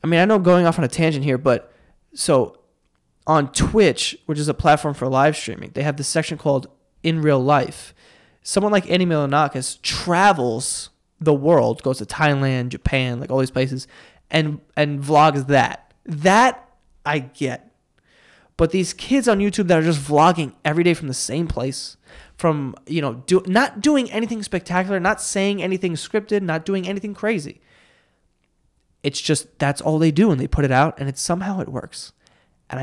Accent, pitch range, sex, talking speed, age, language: American, 140-185 Hz, male, 180 wpm, 20-39, English